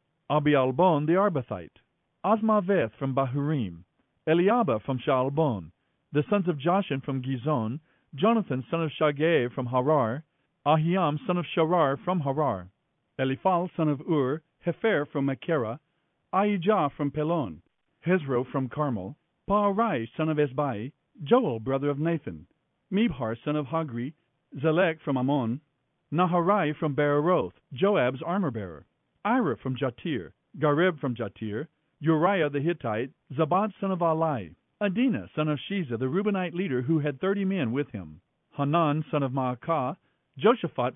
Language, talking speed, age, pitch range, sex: English, 135 wpm, 50-69, 135-180 Hz, male